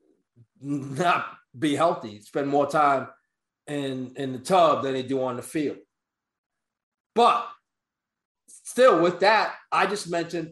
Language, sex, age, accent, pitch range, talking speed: English, male, 30-49, American, 145-235 Hz, 130 wpm